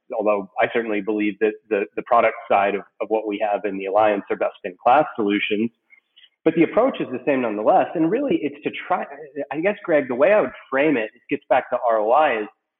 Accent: American